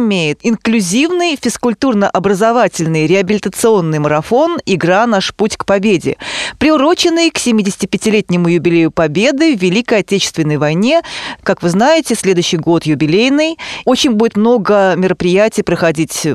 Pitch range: 180-235 Hz